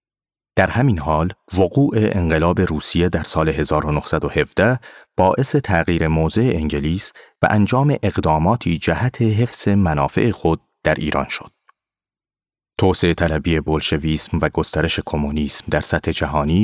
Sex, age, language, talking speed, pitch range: male, 30-49, Persian, 115 wpm, 80-105 Hz